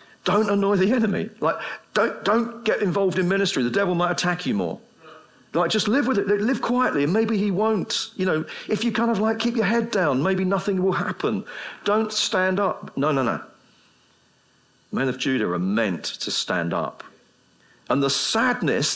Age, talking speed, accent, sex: 50-69, 190 wpm, British, male